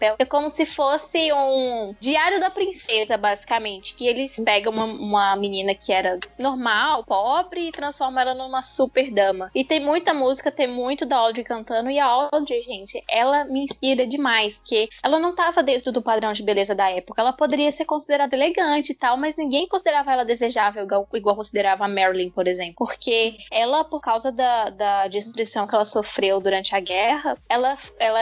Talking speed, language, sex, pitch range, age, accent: 185 wpm, Portuguese, female, 225-300 Hz, 10-29, Brazilian